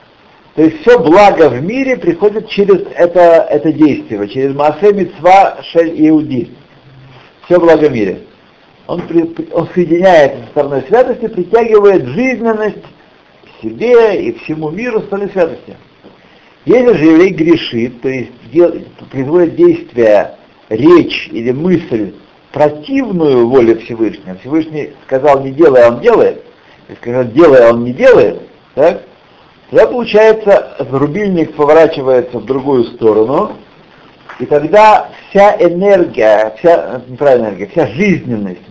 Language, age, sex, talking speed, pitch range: Russian, 60-79, male, 130 wpm, 140-220 Hz